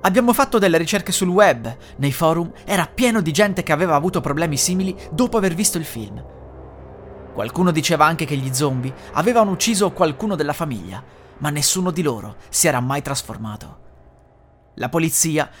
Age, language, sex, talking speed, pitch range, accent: 30-49, Italian, male, 165 wpm, 120-195 Hz, native